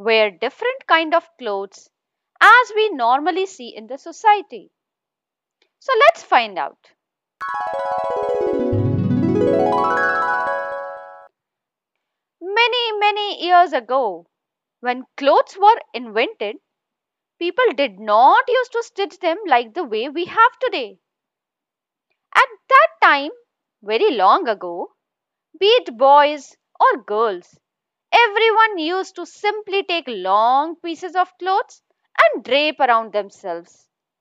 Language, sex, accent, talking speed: English, female, Indian, 105 wpm